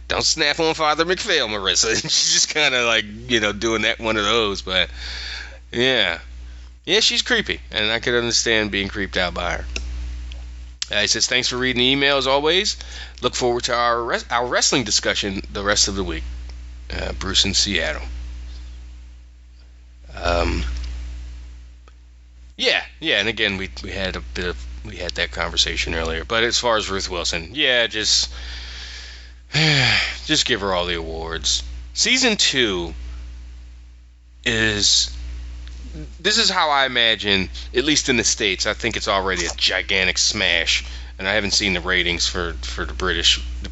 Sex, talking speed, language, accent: male, 165 wpm, English, American